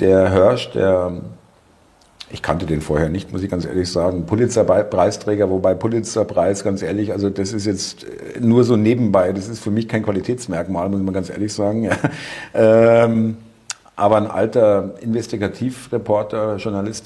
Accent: German